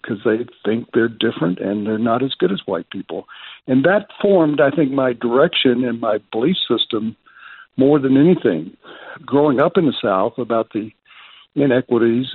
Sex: male